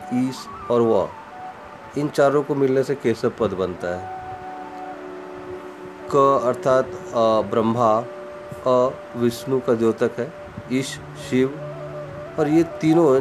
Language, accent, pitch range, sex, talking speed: Hindi, native, 115-140 Hz, male, 115 wpm